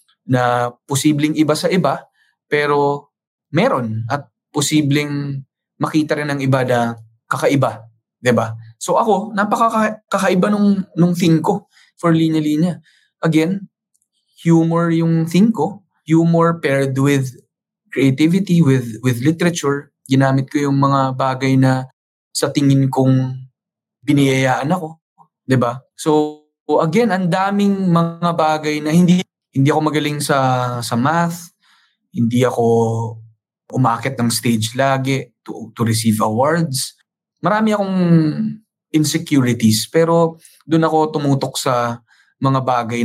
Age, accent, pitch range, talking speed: 20-39, Filipino, 120-165 Hz, 115 wpm